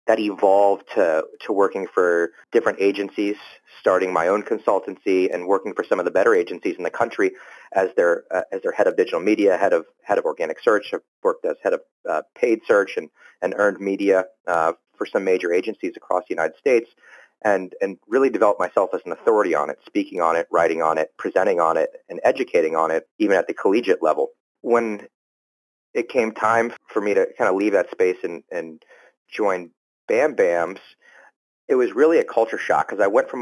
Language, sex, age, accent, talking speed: English, male, 30-49, American, 205 wpm